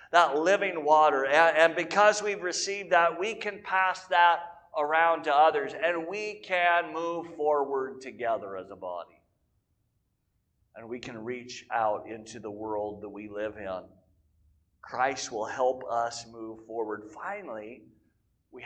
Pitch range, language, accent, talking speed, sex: 145-200 Hz, English, American, 140 wpm, male